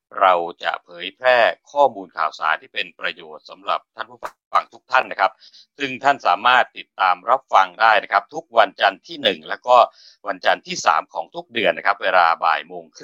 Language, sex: Thai, male